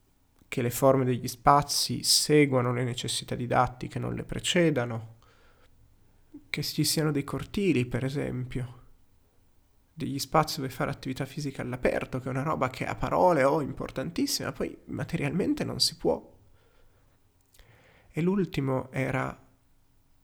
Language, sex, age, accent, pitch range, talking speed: Italian, male, 30-49, native, 95-145 Hz, 130 wpm